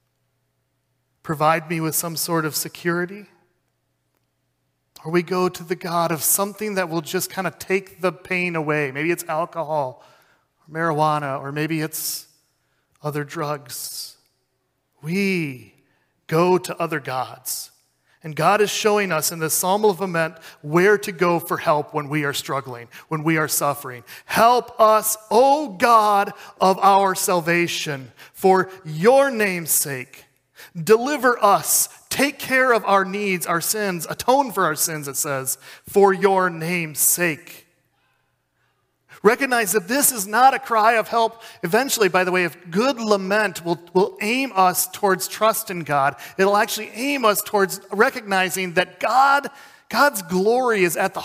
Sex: male